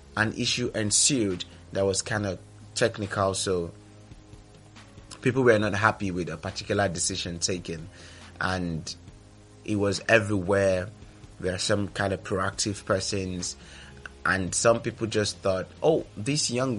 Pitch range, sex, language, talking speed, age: 95-110 Hz, male, English, 130 wpm, 30-49